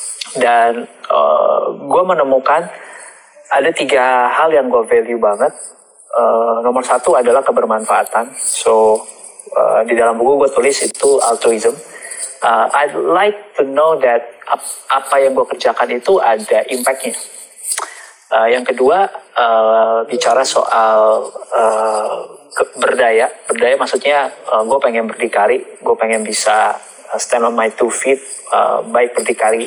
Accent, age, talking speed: native, 20-39, 125 wpm